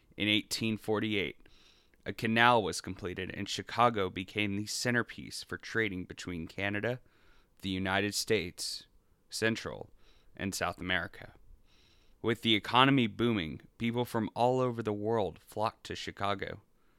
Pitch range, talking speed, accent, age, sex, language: 95-110 Hz, 125 wpm, American, 20-39, male, English